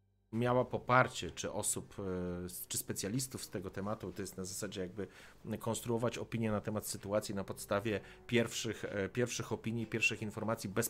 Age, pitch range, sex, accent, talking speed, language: 40-59, 95-115 Hz, male, native, 150 wpm, Polish